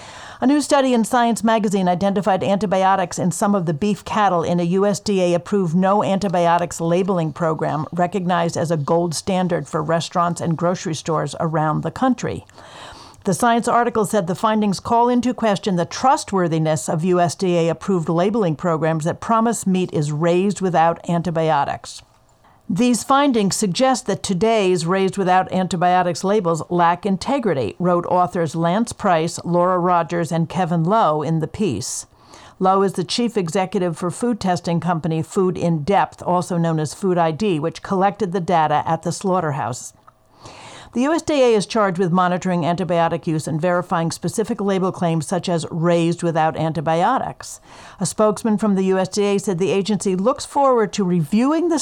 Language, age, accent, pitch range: English, 50-69, American, 170-210 Hz